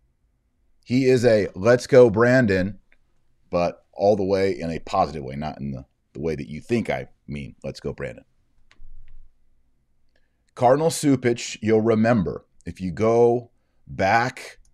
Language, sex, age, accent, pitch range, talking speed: English, male, 40-59, American, 95-130 Hz, 145 wpm